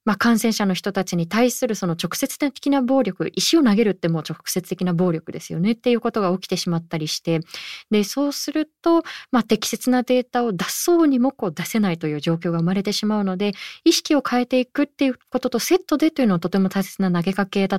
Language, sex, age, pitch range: Japanese, female, 20-39, 180-280 Hz